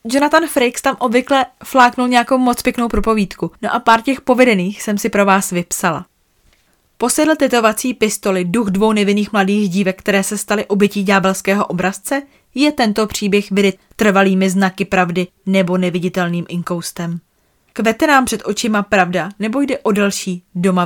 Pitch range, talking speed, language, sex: 190-250 Hz, 150 wpm, Czech, female